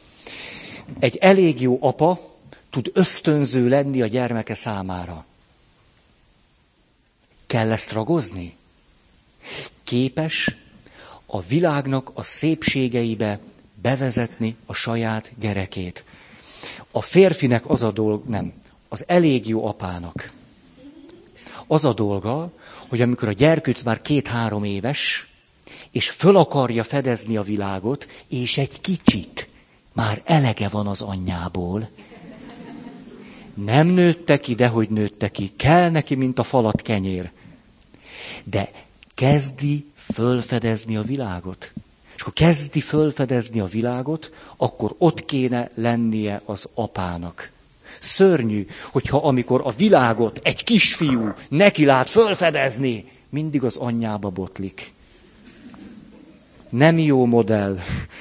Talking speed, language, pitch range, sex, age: 105 wpm, Hungarian, 105-150 Hz, male, 50-69